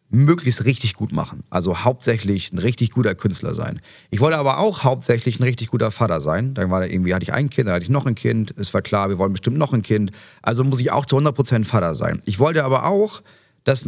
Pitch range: 100-135 Hz